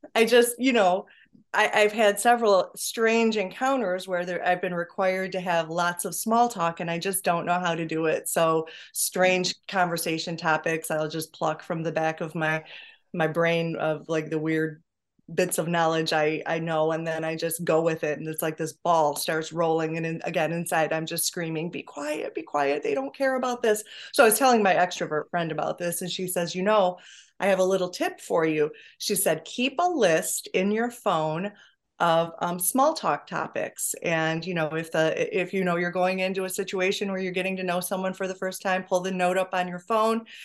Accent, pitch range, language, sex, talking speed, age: American, 160-190 Hz, English, female, 215 wpm, 20-39